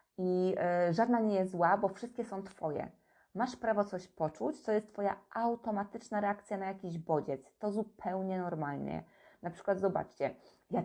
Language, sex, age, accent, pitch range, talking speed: Polish, female, 20-39, native, 175-220 Hz, 160 wpm